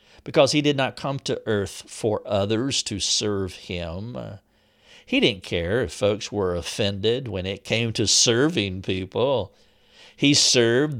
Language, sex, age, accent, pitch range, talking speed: English, male, 50-69, American, 105-125 Hz, 145 wpm